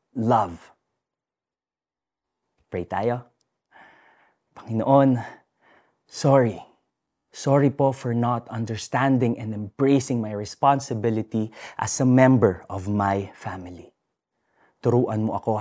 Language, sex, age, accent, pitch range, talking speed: Filipino, male, 20-39, native, 105-145 Hz, 90 wpm